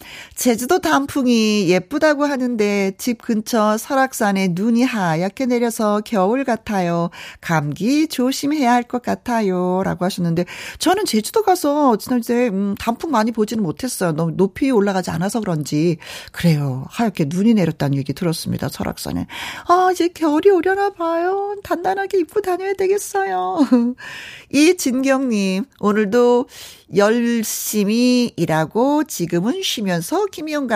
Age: 40-59